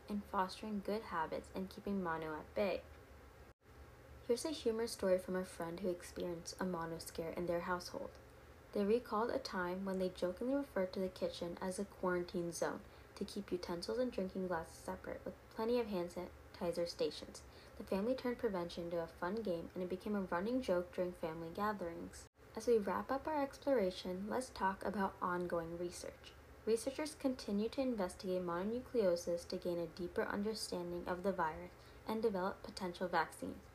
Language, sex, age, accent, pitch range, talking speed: English, female, 20-39, American, 175-225 Hz, 170 wpm